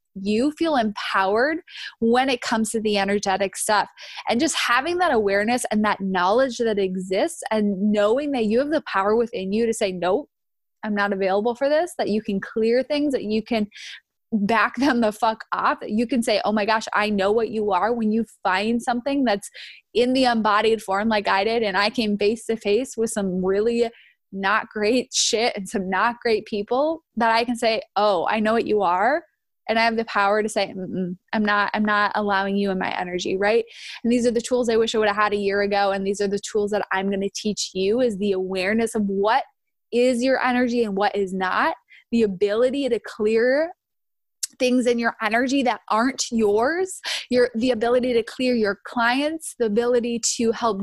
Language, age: English, 20-39